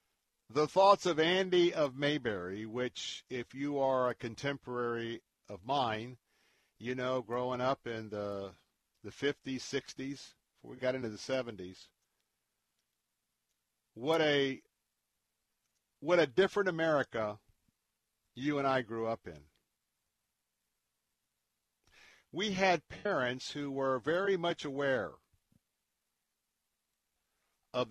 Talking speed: 105 wpm